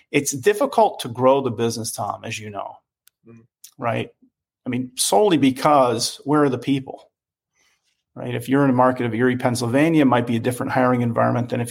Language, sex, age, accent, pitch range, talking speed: English, male, 40-59, American, 120-130 Hz, 190 wpm